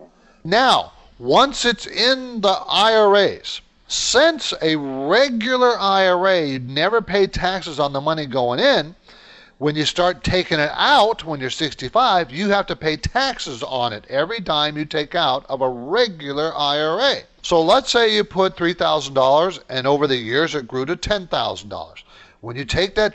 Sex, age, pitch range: male, 40-59, 140-210 Hz